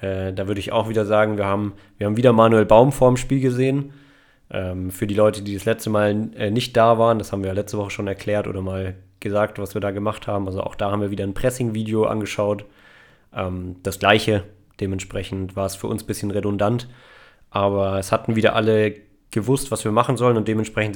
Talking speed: 210 wpm